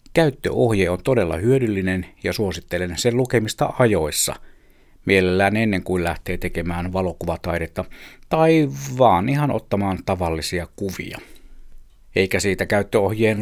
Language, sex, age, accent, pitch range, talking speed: Finnish, male, 50-69, native, 90-115 Hz, 105 wpm